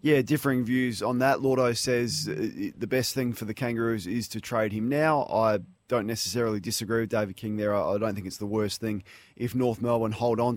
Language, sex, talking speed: English, male, 215 wpm